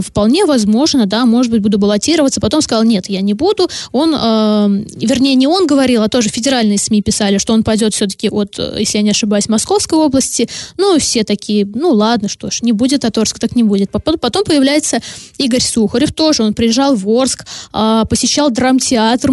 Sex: female